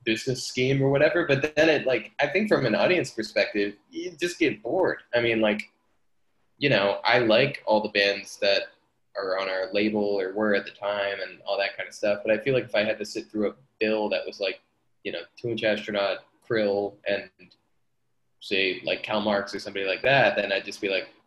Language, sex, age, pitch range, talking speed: English, male, 10-29, 100-130 Hz, 220 wpm